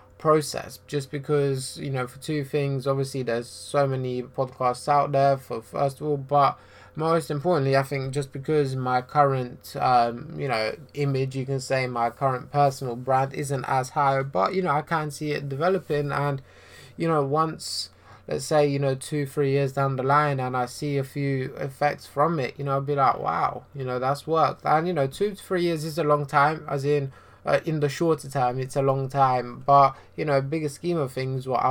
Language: English